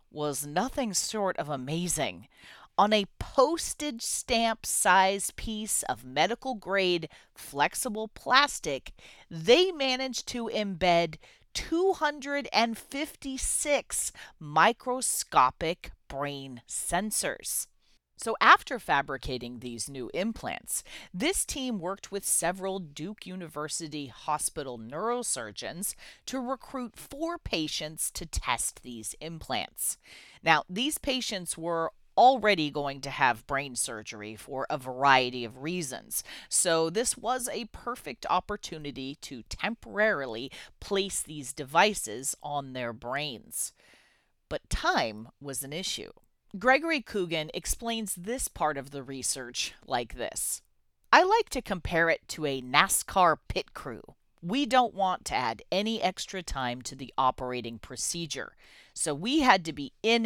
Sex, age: female, 40-59